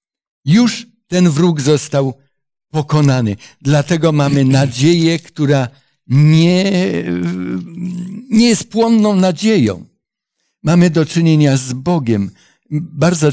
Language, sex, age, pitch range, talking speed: Polish, male, 60-79, 135-180 Hz, 90 wpm